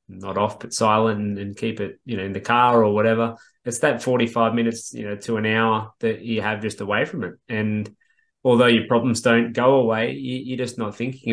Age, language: 20-39, English